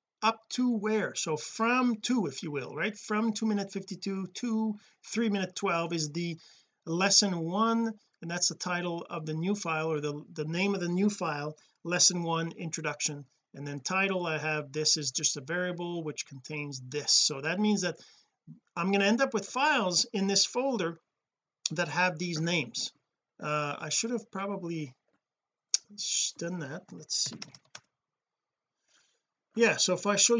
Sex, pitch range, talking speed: male, 160-210 Hz, 170 wpm